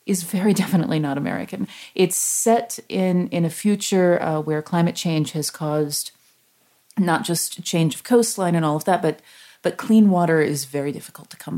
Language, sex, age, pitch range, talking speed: English, female, 30-49, 155-200 Hz, 185 wpm